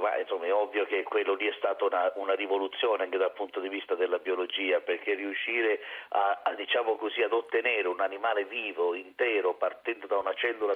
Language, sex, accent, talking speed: Italian, male, native, 165 wpm